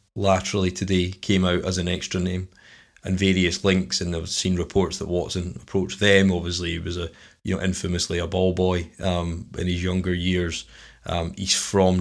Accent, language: British, English